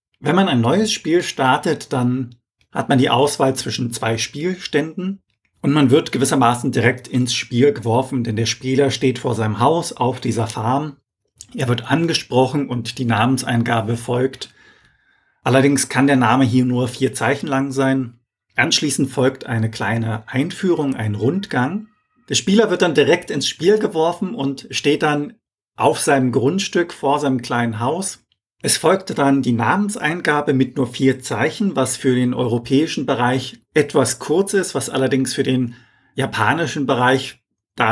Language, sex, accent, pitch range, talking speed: German, male, German, 120-145 Hz, 155 wpm